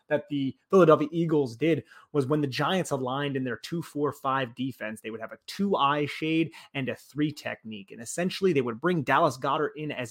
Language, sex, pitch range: English, male, 130-165 Hz